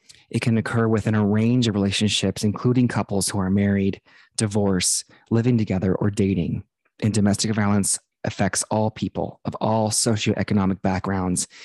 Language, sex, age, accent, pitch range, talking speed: English, male, 20-39, American, 100-115 Hz, 145 wpm